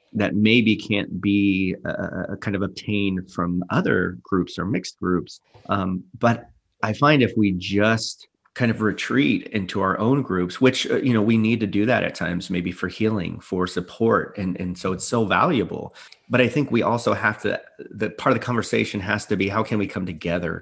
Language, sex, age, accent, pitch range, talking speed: English, male, 30-49, American, 90-105 Hz, 205 wpm